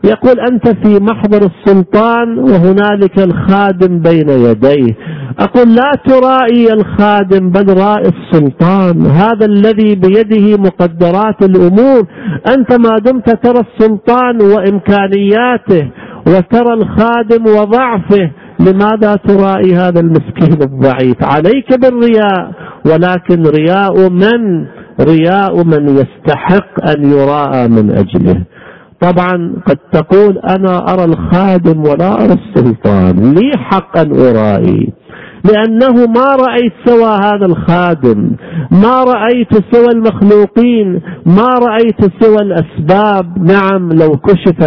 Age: 50-69